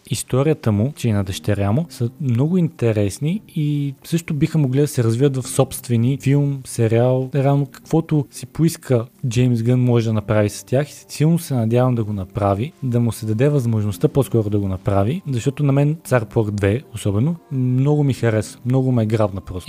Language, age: Bulgarian, 20-39